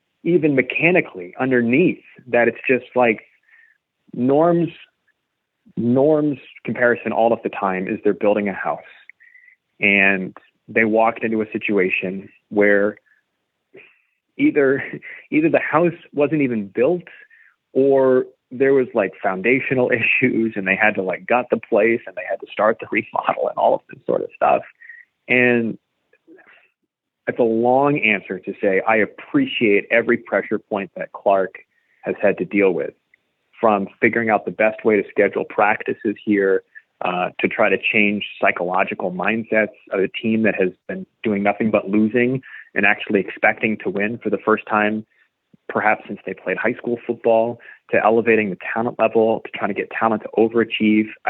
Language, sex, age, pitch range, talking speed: English, male, 30-49, 105-135 Hz, 160 wpm